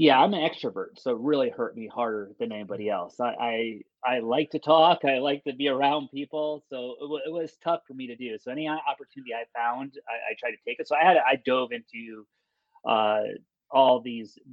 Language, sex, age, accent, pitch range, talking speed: English, male, 30-49, American, 110-150 Hz, 225 wpm